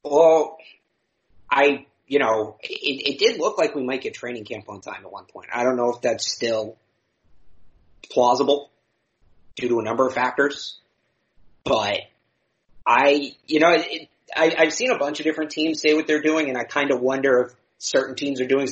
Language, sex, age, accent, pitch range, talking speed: English, male, 30-49, American, 125-160 Hz, 185 wpm